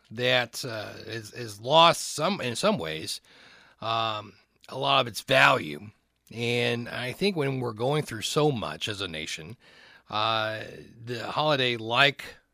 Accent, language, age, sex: American, English, 40-59, male